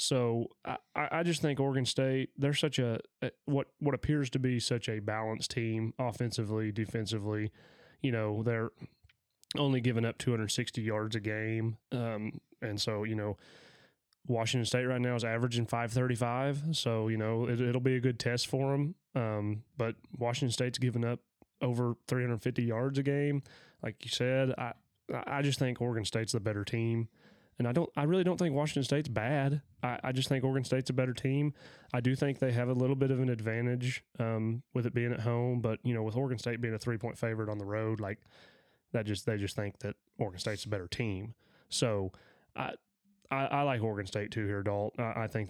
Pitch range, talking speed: 110-130 Hz, 200 wpm